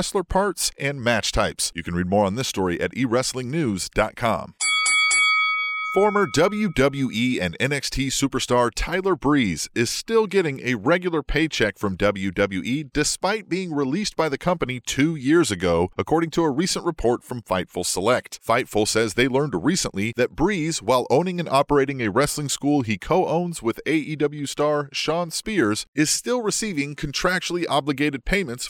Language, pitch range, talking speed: English, 115-165 Hz, 155 wpm